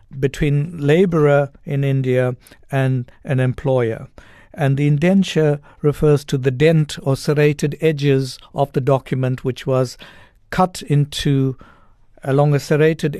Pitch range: 130-155 Hz